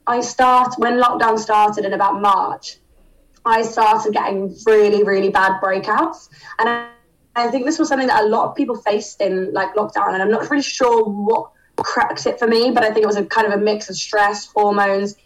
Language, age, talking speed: English, 20-39, 210 wpm